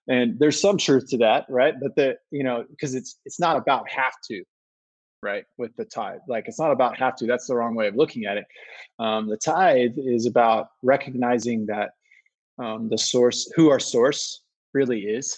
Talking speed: 200 wpm